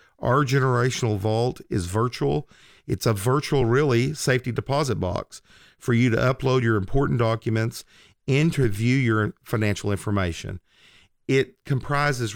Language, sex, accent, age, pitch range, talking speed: English, male, American, 40-59, 110-130 Hz, 120 wpm